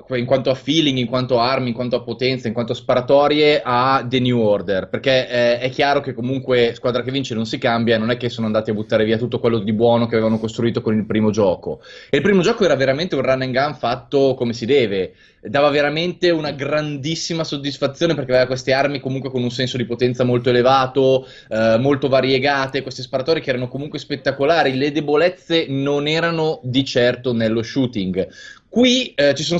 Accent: native